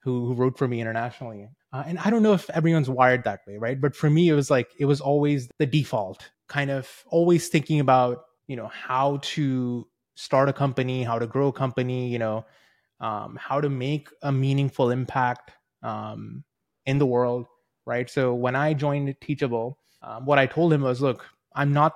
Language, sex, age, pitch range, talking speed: English, male, 20-39, 120-145 Hz, 195 wpm